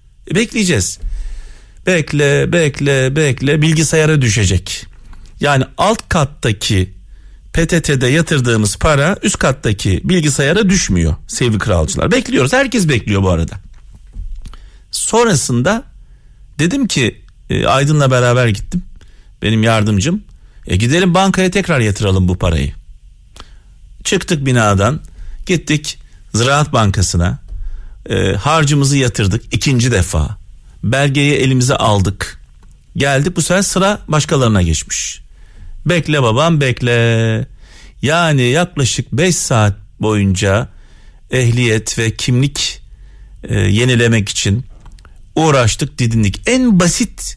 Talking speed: 95 wpm